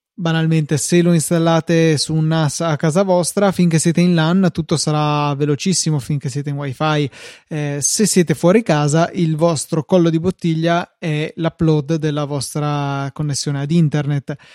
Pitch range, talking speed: 150-165 Hz, 155 wpm